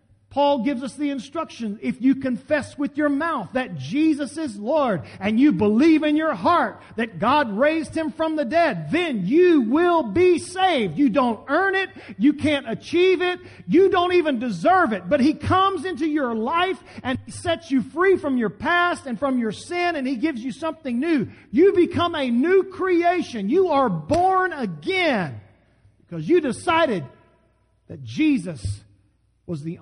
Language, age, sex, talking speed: English, 40-59, male, 175 wpm